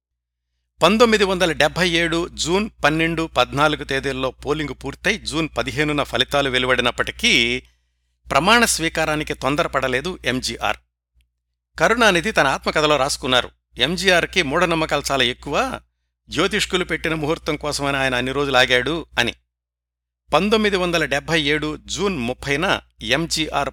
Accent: native